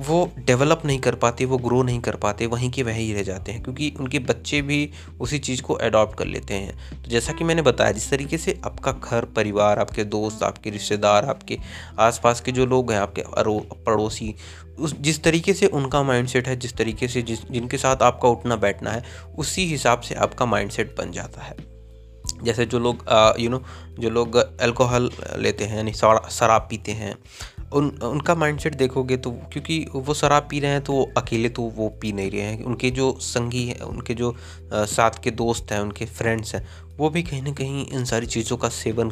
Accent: native